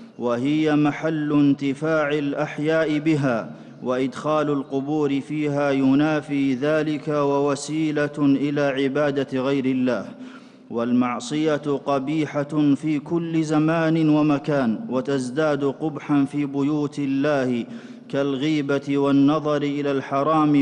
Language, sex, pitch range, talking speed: Arabic, male, 140-155 Hz, 85 wpm